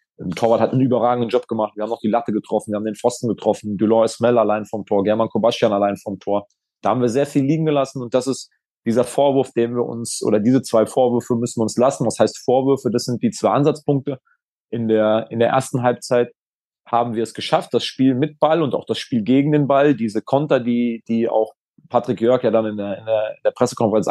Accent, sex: German, male